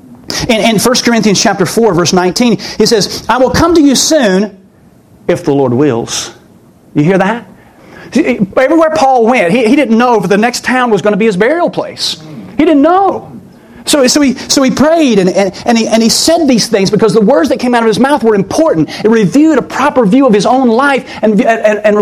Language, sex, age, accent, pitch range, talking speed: English, male, 40-59, American, 170-245 Hz, 225 wpm